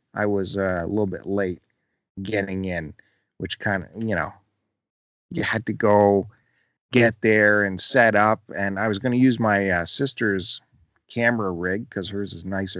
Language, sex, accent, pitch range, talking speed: English, male, American, 95-120 Hz, 180 wpm